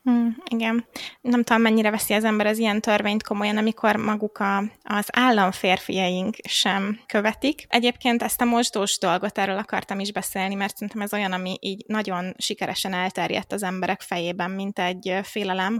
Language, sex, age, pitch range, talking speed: Hungarian, female, 20-39, 190-215 Hz, 165 wpm